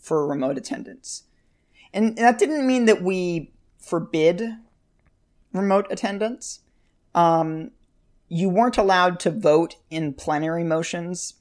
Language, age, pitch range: English, 40-59, 155-200 Hz